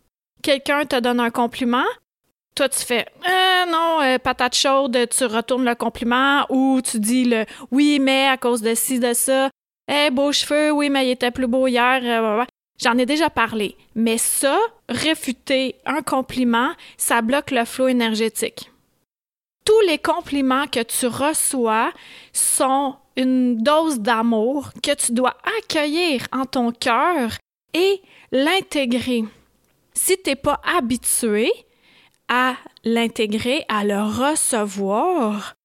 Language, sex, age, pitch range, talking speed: French, female, 30-49, 240-290 Hz, 145 wpm